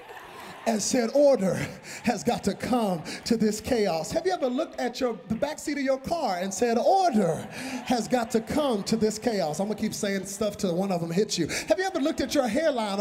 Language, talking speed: English, 230 wpm